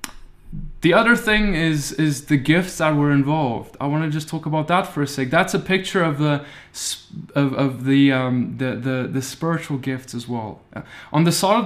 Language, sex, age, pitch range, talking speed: English, male, 20-39, 135-170 Hz, 205 wpm